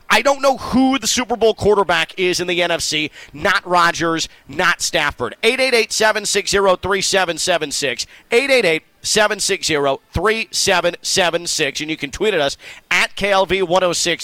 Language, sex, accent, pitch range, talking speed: English, male, American, 145-190 Hz, 155 wpm